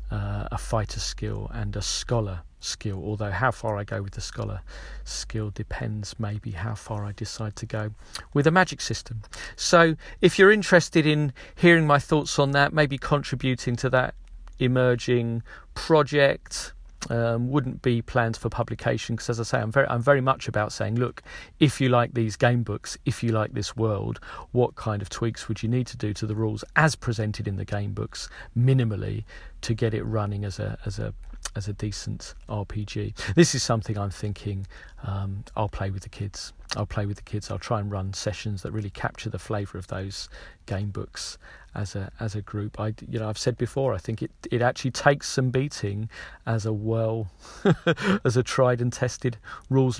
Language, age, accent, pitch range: English, 40-59, British, 105-125 Hz